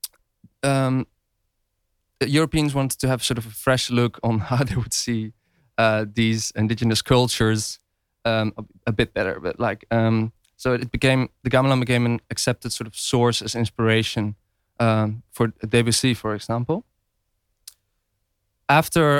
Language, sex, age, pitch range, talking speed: English, male, 20-39, 110-135 Hz, 145 wpm